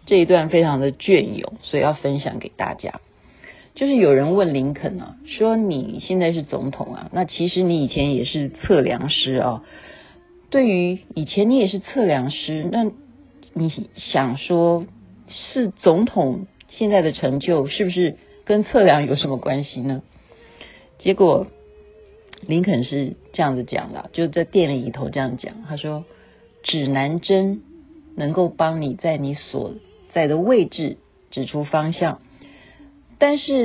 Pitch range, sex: 140-200 Hz, female